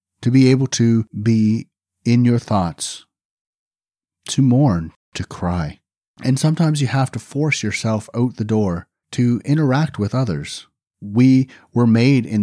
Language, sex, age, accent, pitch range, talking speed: English, male, 40-59, American, 95-130 Hz, 145 wpm